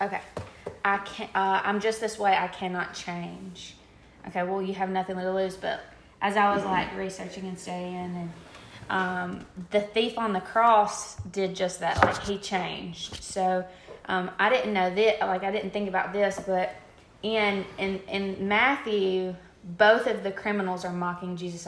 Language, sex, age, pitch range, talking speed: English, female, 20-39, 180-195 Hz, 175 wpm